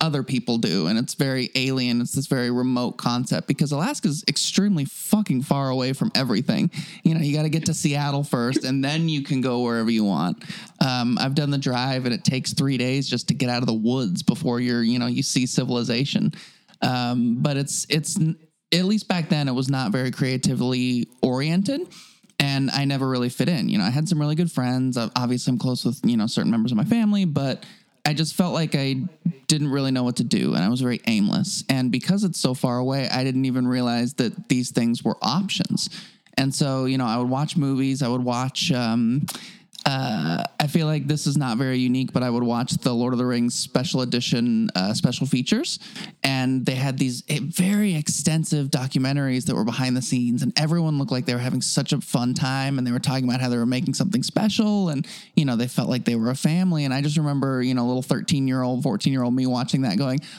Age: 20-39